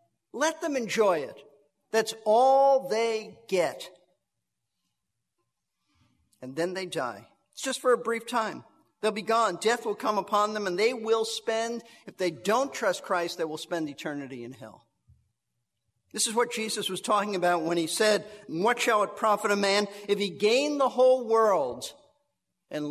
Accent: American